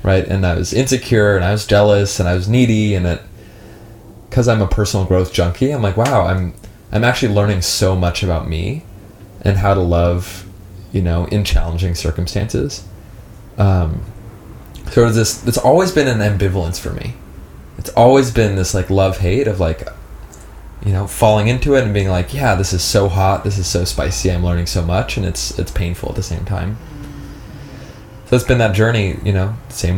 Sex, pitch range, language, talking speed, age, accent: male, 90-110 Hz, English, 195 wpm, 20-39, American